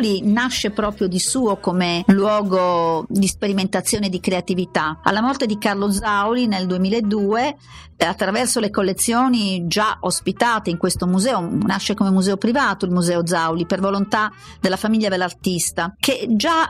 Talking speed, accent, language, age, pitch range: 140 wpm, native, Italian, 50-69, 185-230 Hz